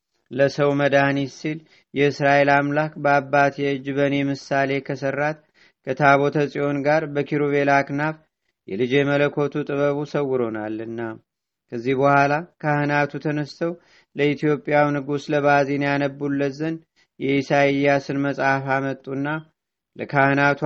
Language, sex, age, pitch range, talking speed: Amharic, male, 40-59, 140-145 Hz, 85 wpm